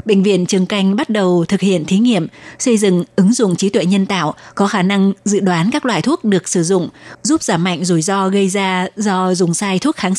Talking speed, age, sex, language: 240 wpm, 20-39, female, Vietnamese